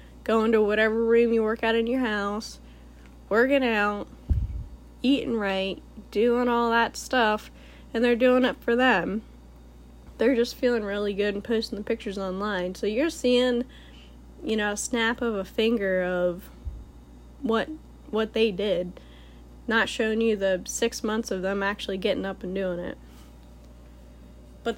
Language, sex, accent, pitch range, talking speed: English, female, American, 175-230 Hz, 155 wpm